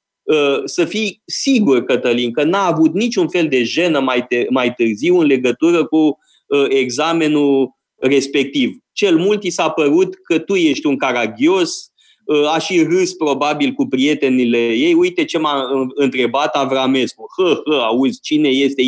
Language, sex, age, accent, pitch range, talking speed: Romanian, male, 30-49, native, 135-210 Hz, 150 wpm